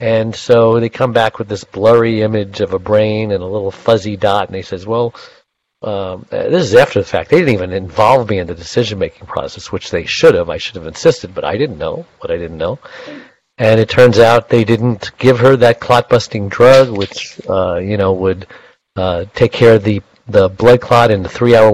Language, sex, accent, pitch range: English, male, American, 100-130 Hz